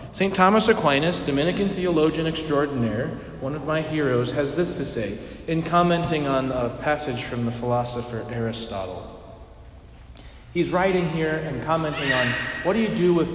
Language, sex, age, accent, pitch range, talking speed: English, male, 40-59, American, 125-180 Hz, 155 wpm